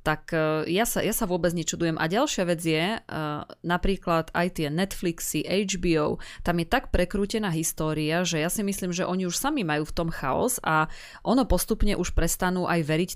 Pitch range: 160-185 Hz